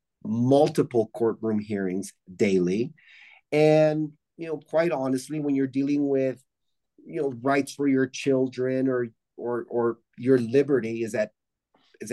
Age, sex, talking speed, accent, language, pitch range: 30-49, male, 135 wpm, American, English, 120-145 Hz